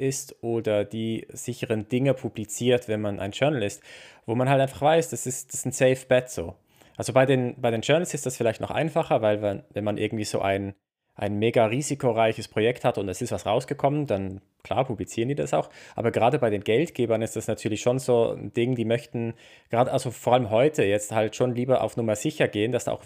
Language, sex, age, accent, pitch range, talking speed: German, male, 20-39, German, 110-135 Hz, 230 wpm